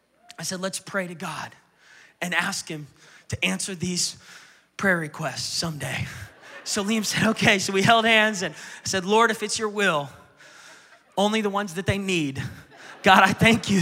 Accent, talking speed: American, 175 wpm